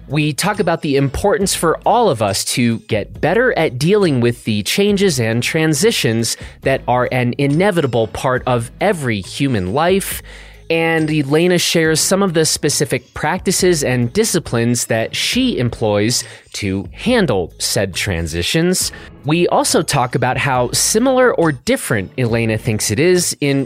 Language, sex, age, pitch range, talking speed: English, male, 30-49, 115-165 Hz, 145 wpm